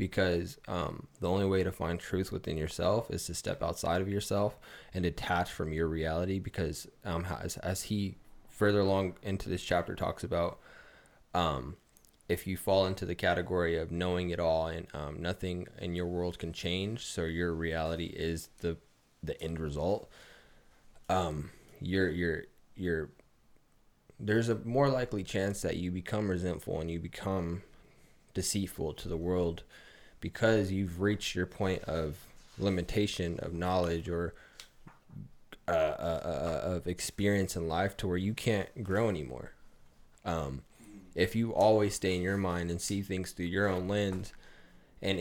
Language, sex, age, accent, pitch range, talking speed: English, male, 20-39, American, 85-100 Hz, 160 wpm